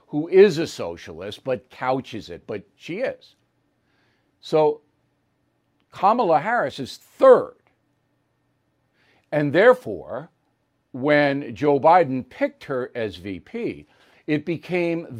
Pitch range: 125-180 Hz